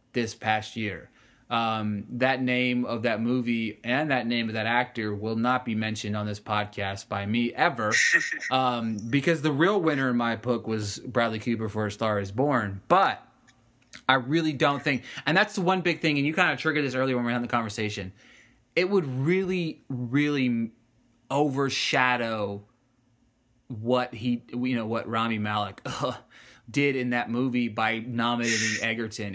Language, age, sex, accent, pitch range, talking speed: English, 20-39, male, American, 115-145 Hz, 170 wpm